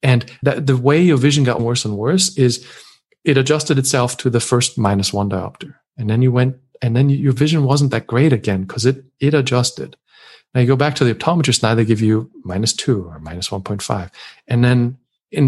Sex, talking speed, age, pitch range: male, 215 wpm, 40-59, 110-135 Hz